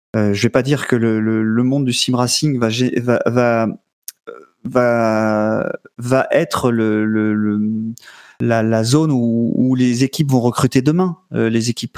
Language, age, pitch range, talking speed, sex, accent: French, 30-49, 110-130 Hz, 175 wpm, male, French